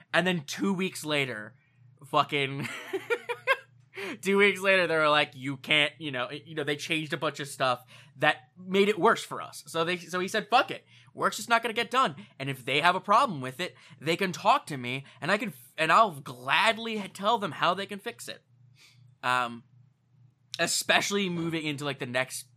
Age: 10-29